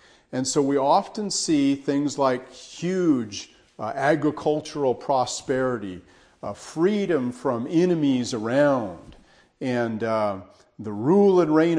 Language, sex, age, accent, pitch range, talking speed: English, male, 50-69, American, 110-140 Hz, 110 wpm